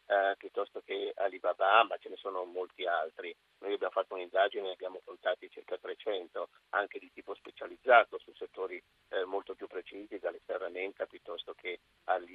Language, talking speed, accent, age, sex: Italian, 165 wpm, native, 50-69, male